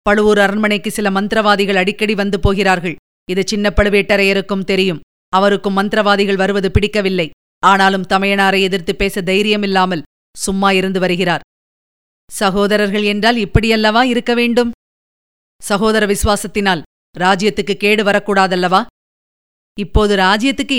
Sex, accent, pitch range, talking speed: female, native, 195-225 Hz, 100 wpm